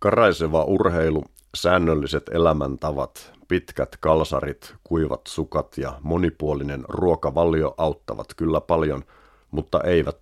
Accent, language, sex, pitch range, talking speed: native, Finnish, male, 70-85 Hz, 95 wpm